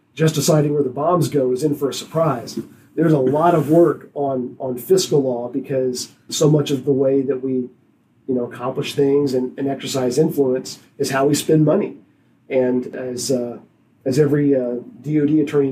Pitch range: 130-155 Hz